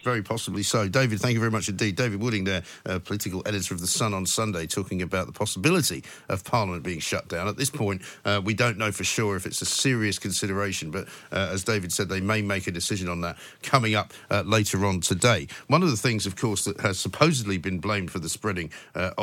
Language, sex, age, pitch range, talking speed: English, male, 50-69, 100-135 Hz, 235 wpm